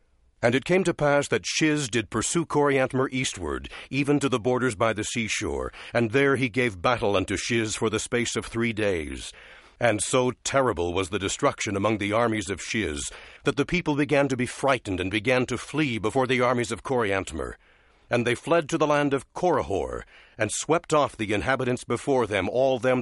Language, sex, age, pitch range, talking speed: English, male, 60-79, 110-140 Hz, 195 wpm